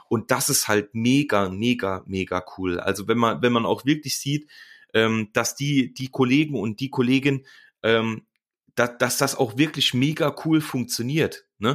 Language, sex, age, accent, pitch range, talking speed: German, male, 30-49, German, 110-140 Hz, 155 wpm